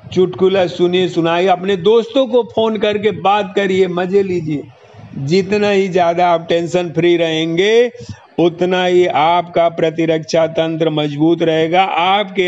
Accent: native